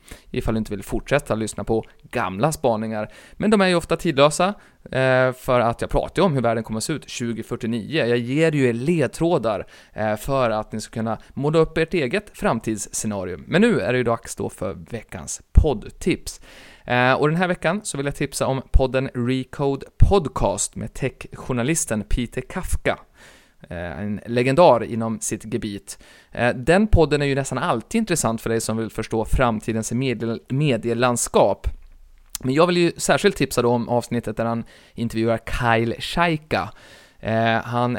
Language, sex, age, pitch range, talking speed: Swedish, male, 30-49, 115-150 Hz, 165 wpm